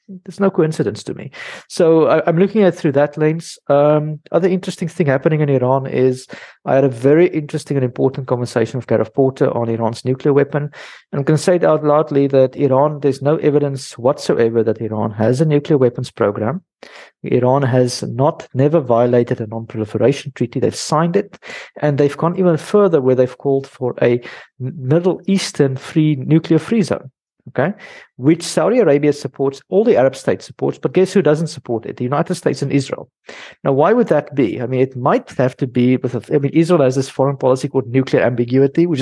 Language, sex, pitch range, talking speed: English, male, 125-160 Hz, 200 wpm